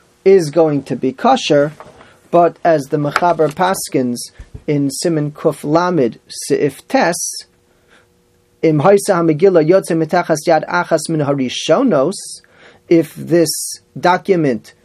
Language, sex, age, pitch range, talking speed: English, male, 30-49, 145-175 Hz, 70 wpm